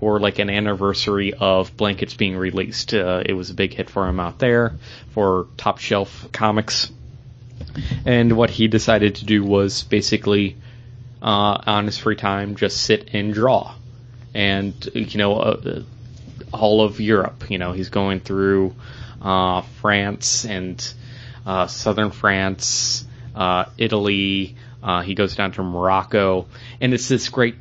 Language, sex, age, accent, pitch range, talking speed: English, male, 20-39, American, 100-120 Hz, 150 wpm